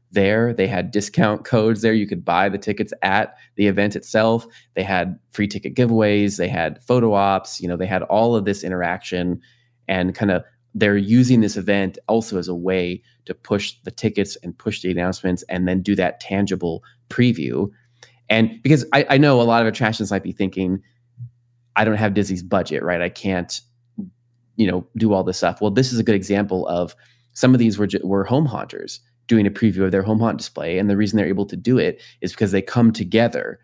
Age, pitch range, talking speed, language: 20-39, 95-120 Hz, 210 wpm, English